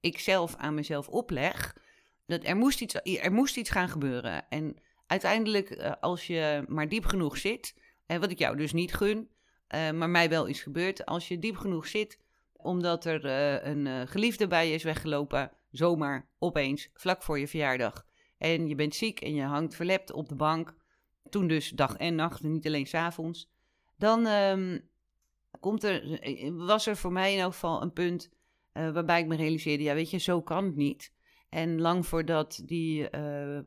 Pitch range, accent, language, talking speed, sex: 145-185 Hz, Dutch, Dutch, 180 wpm, female